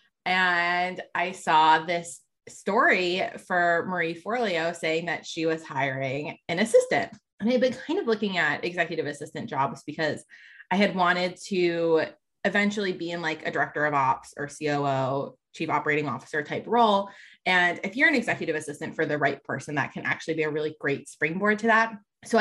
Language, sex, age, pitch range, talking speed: English, female, 20-39, 160-210 Hz, 180 wpm